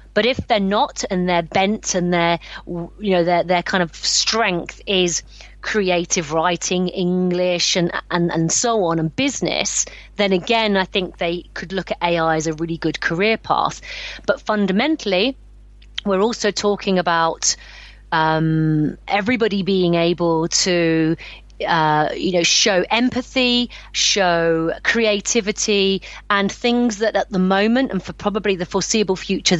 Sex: female